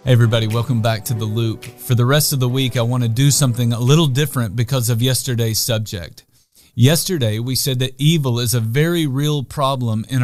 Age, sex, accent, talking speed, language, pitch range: 40-59, male, American, 210 wpm, English, 120-155 Hz